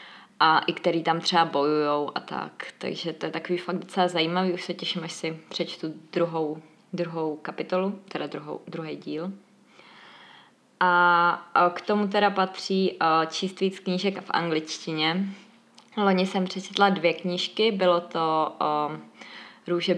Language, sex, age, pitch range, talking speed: Czech, female, 20-39, 165-190 Hz, 135 wpm